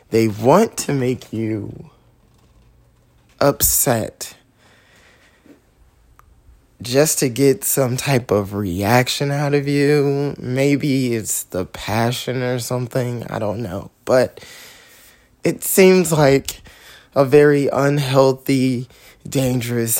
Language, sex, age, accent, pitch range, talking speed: English, male, 20-39, American, 105-135 Hz, 100 wpm